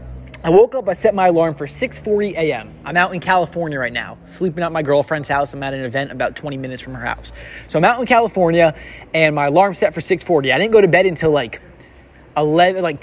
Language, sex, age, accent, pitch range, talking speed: English, male, 20-39, American, 145-185 Hz, 230 wpm